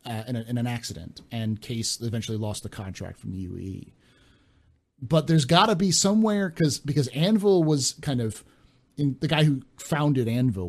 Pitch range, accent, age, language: 105-135 Hz, American, 30-49, English